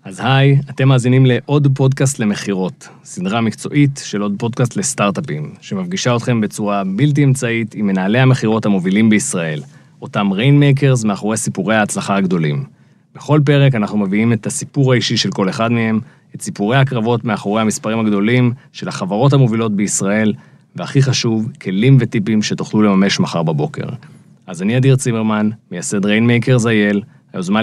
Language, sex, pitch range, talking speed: Hebrew, male, 105-135 Hz, 145 wpm